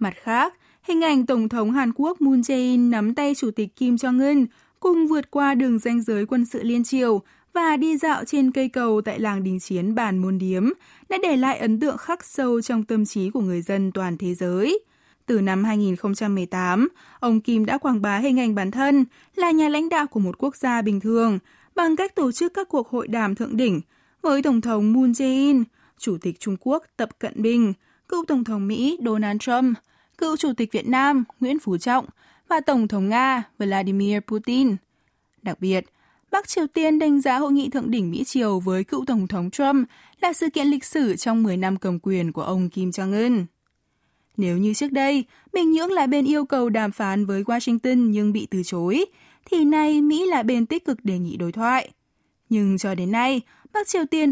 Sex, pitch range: female, 205-280 Hz